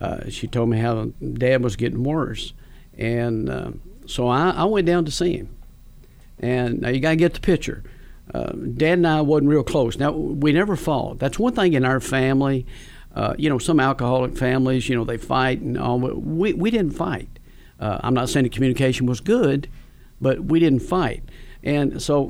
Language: English